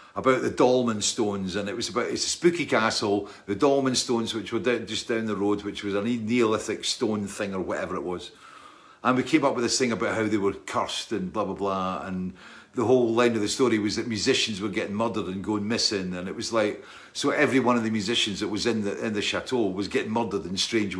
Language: English